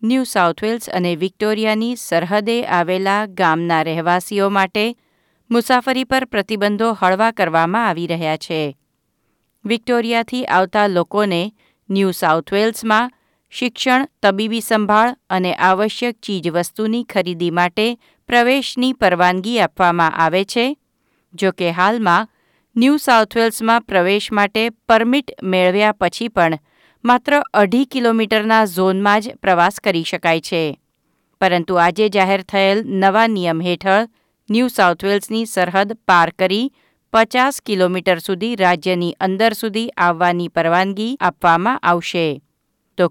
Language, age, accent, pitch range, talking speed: Gujarati, 50-69, native, 180-230 Hz, 110 wpm